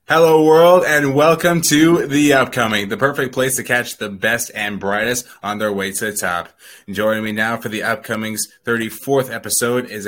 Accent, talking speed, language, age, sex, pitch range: American, 185 wpm, English, 20-39, male, 95-110 Hz